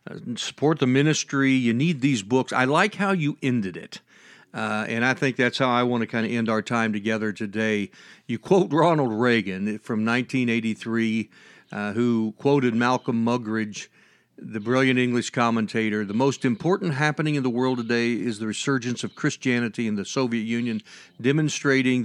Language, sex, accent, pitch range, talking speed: English, male, American, 110-135 Hz, 170 wpm